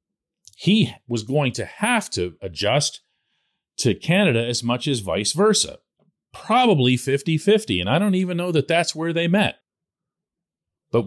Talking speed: 145 wpm